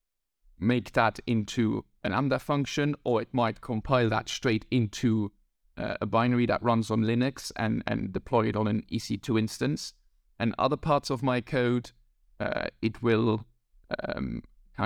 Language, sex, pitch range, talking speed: English, male, 105-120 Hz, 155 wpm